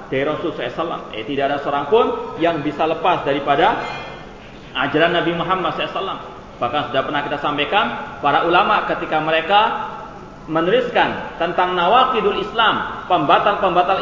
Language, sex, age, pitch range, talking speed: Malay, male, 30-49, 140-185 Hz, 130 wpm